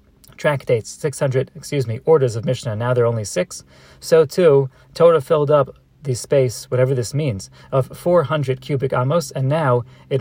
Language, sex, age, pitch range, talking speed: English, male, 40-59, 120-145 Hz, 170 wpm